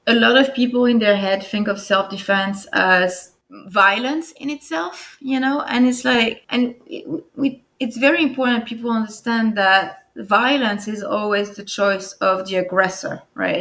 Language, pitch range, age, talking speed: English, 190-240 Hz, 20-39, 170 wpm